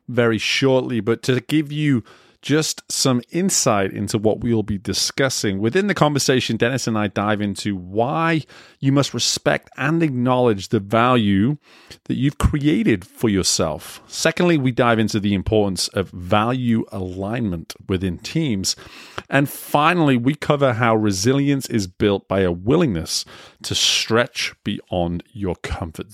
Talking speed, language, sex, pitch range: 140 wpm, English, male, 95-130 Hz